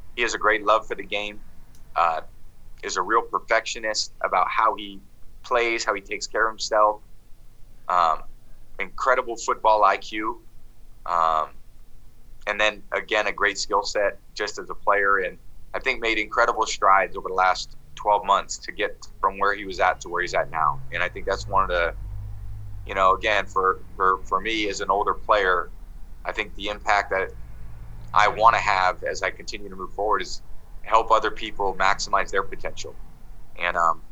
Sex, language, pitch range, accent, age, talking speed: male, English, 90-110 Hz, American, 30-49, 185 wpm